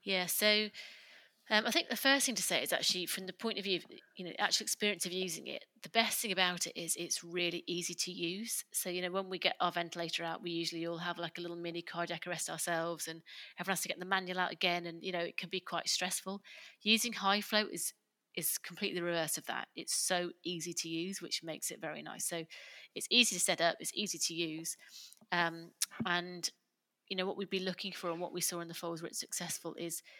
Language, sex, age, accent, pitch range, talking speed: English, female, 30-49, British, 170-190 Hz, 240 wpm